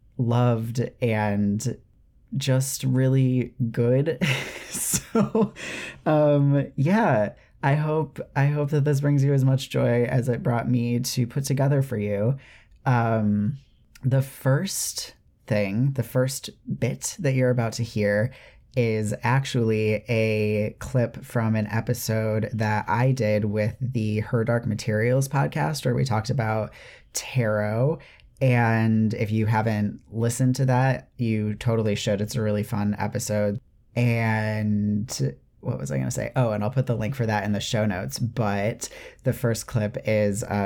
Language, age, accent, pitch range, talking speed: English, 30-49, American, 105-130 Hz, 150 wpm